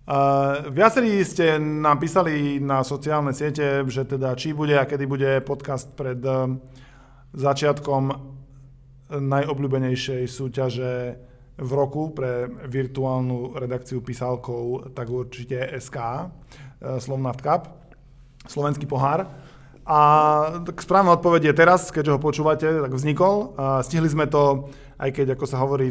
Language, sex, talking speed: Slovak, male, 115 wpm